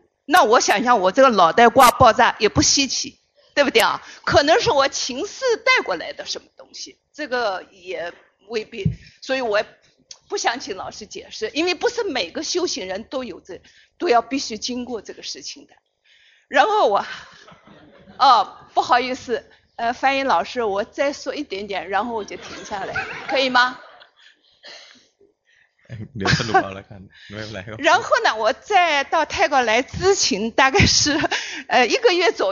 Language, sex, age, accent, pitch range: Chinese, female, 50-69, native, 220-330 Hz